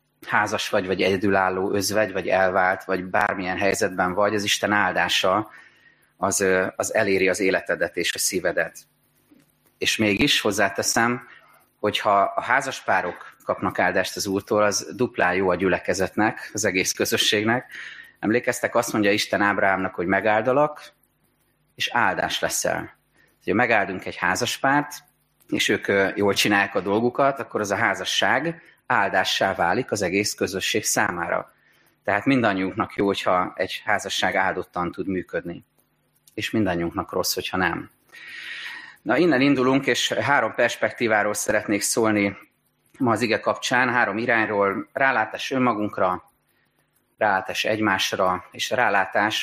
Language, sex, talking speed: Hungarian, male, 125 wpm